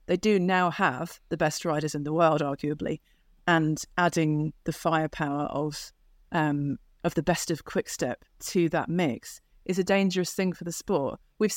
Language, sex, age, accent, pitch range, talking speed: English, female, 30-49, British, 155-180 Hz, 170 wpm